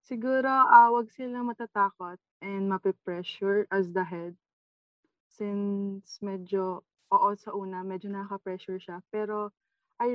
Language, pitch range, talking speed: Filipino, 190-230 Hz, 125 wpm